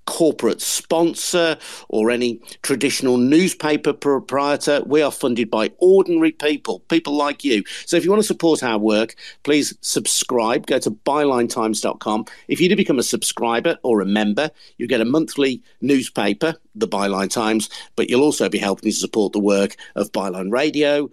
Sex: male